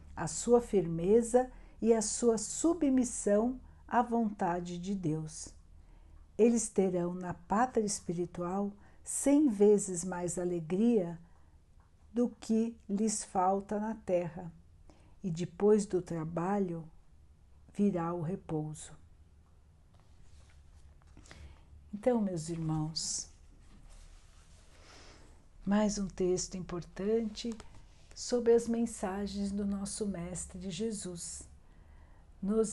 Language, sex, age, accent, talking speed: Portuguese, female, 60-79, Brazilian, 90 wpm